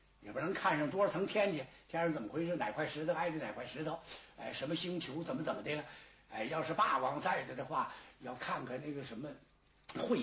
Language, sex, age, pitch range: Chinese, male, 60-79, 170-260 Hz